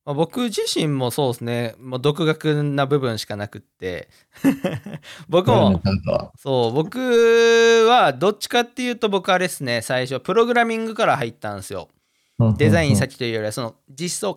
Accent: native